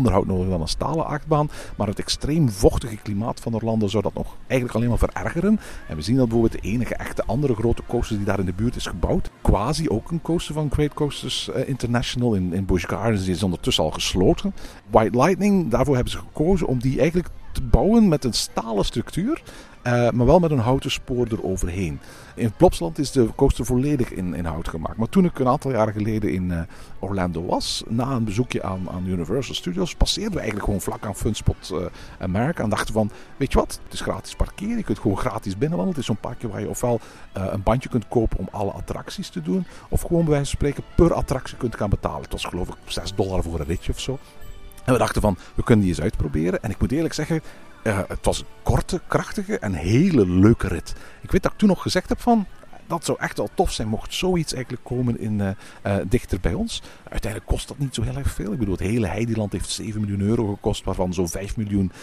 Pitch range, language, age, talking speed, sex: 95-135 Hz, Dutch, 50-69, 225 wpm, male